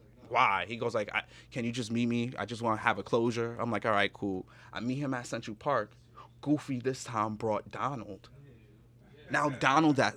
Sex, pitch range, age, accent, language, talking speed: male, 100-120 Hz, 20-39, American, English, 210 wpm